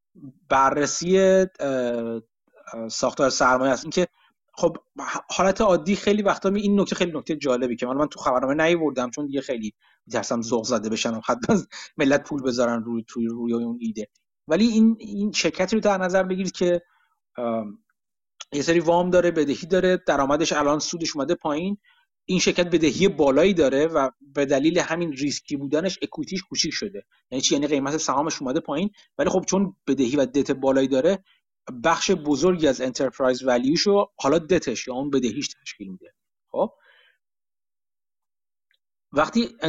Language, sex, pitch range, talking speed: Persian, male, 135-180 Hz, 155 wpm